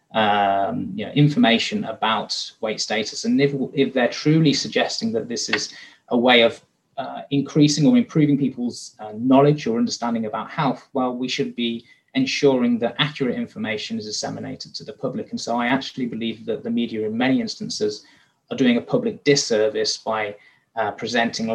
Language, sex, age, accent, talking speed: English, male, 20-39, British, 165 wpm